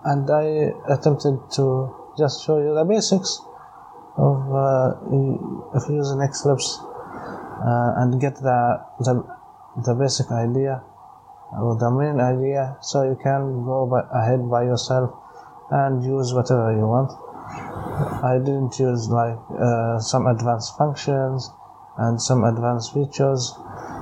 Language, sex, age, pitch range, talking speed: English, male, 20-39, 120-145 Hz, 115 wpm